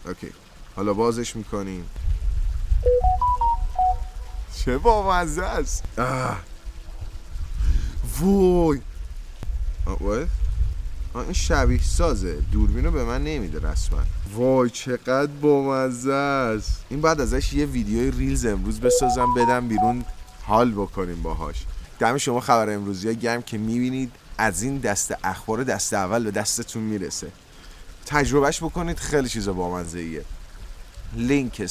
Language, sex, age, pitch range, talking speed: Persian, male, 20-39, 95-140 Hz, 115 wpm